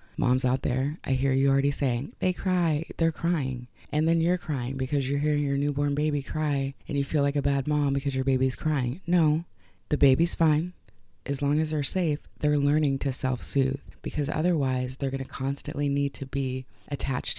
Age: 20-39